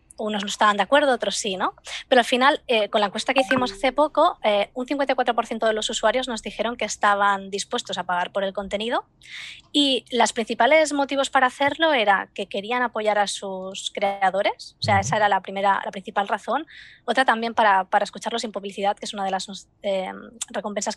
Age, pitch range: 20-39, 195-240 Hz